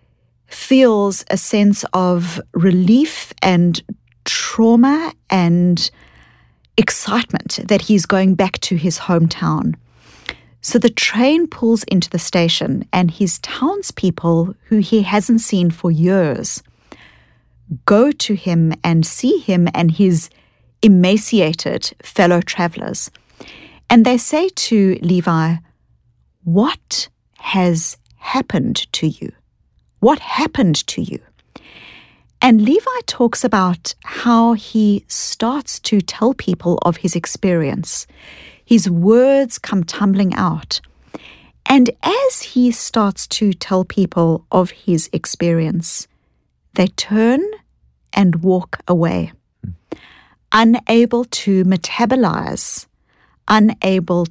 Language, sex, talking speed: English, female, 105 wpm